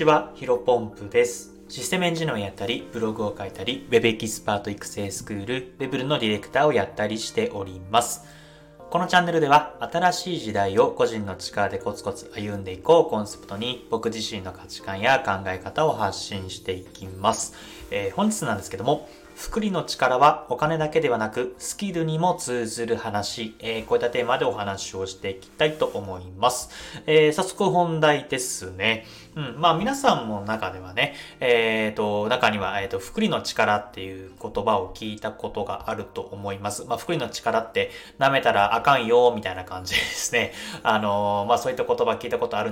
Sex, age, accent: male, 20-39, native